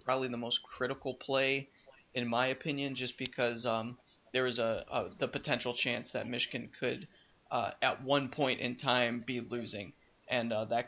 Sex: male